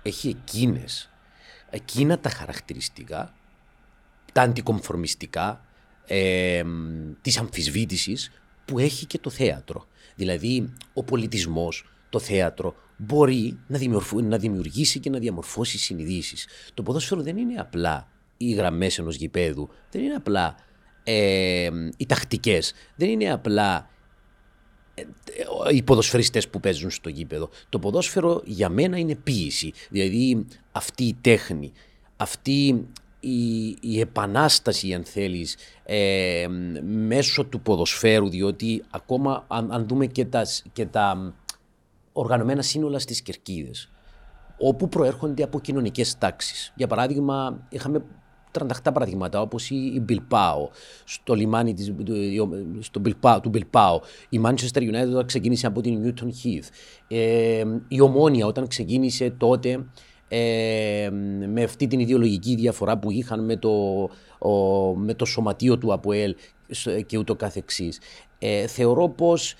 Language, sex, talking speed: Greek, male, 120 wpm